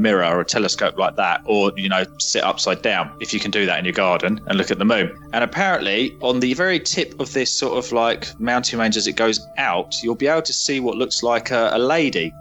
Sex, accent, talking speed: male, British, 255 wpm